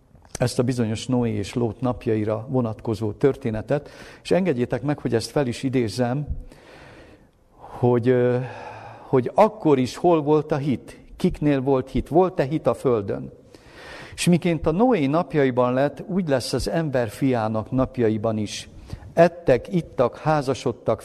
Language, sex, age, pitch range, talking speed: Hungarian, male, 50-69, 120-145 Hz, 135 wpm